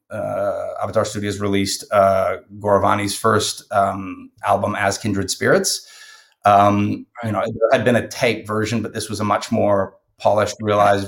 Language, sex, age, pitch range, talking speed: English, male, 30-49, 100-110 Hz, 155 wpm